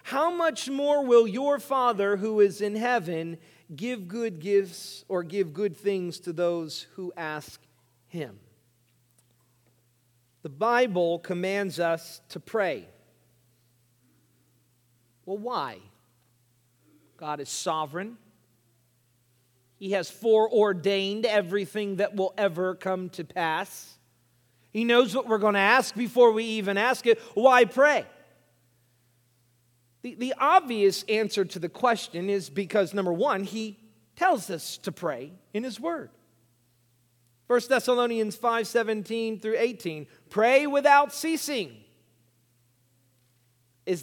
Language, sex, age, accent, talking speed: English, male, 40-59, American, 115 wpm